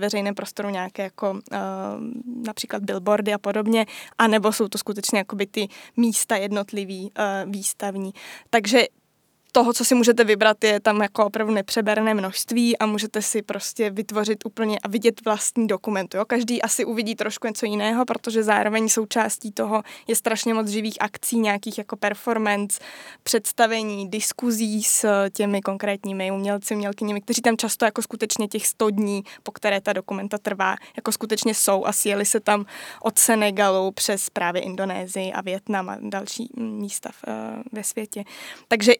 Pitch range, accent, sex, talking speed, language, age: 205-230 Hz, native, female, 150 wpm, Czech, 20-39